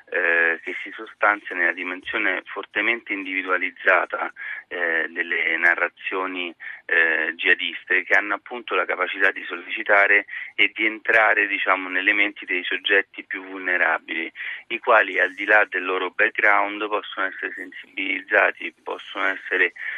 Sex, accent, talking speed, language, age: male, native, 125 wpm, Italian, 30-49